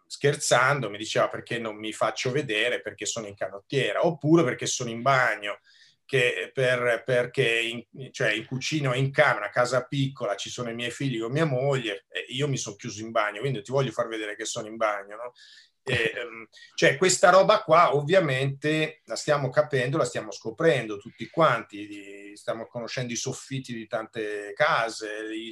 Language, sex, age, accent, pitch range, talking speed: Italian, male, 30-49, native, 115-150 Hz, 185 wpm